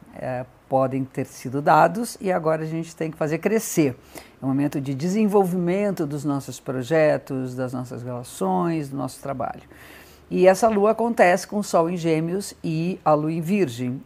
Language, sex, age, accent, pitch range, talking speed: Portuguese, female, 50-69, Brazilian, 145-200 Hz, 175 wpm